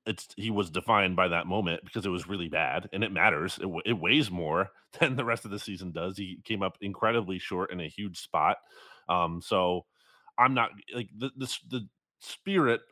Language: English